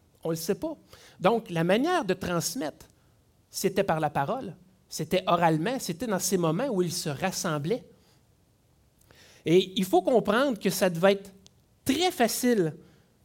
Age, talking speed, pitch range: 50-69, 155 wpm, 175-255 Hz